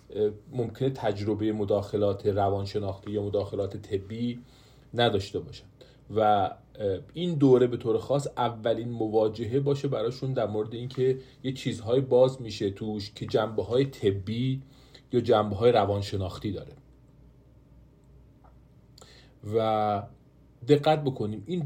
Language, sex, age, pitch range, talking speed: Persian, male, 40-59, 105-130 Hz, 110 wpm